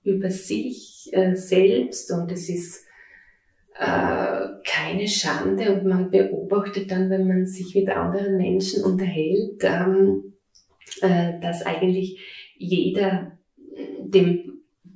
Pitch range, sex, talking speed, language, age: 170-195 Hz, female, 110 wpm, German, 30-49